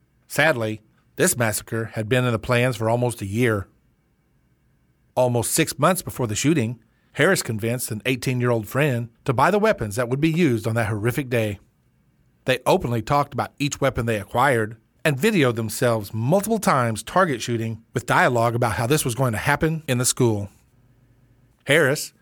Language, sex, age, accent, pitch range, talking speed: English, male, 40-59, American, 110-135 Hz, 170 wpm